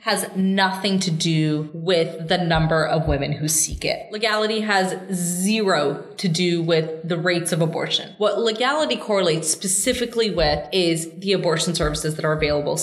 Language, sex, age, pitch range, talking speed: English, female, 20-39, 165-205 Hz, 160 wpm